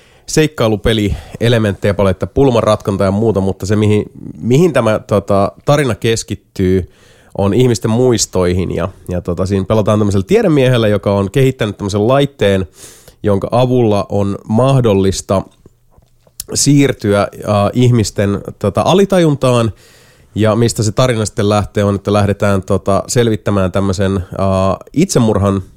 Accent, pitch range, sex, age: native, 95-115 Hz, male, 30-49